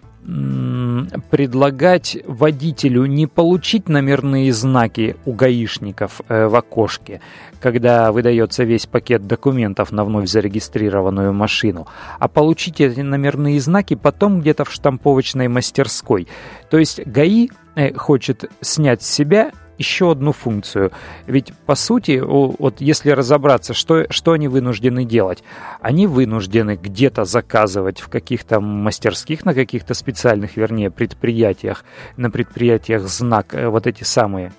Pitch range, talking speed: 110-140 Hz, 120 wpm